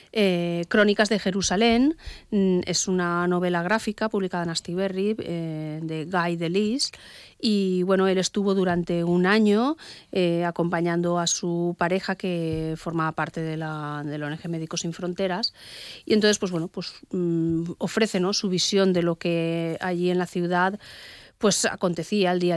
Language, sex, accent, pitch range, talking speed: Spanish, female, Spanish, 170-195 Hz, 155 wpm